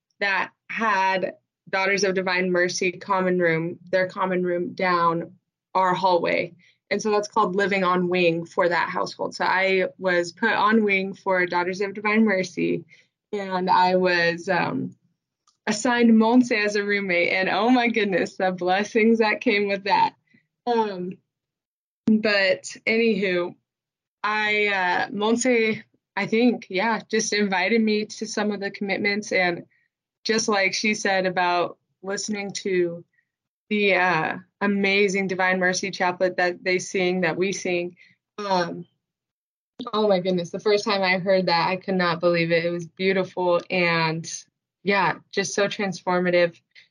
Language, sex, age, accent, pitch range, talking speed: English, female, 20-39, American, 180-205 Hz, 145 wpm